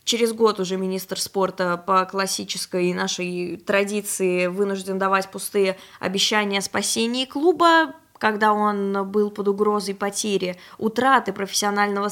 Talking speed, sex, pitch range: 115 wpm, female, 195-240 Hz